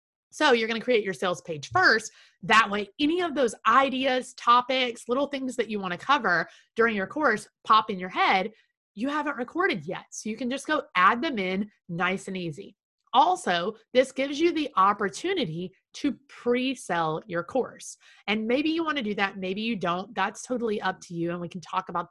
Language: English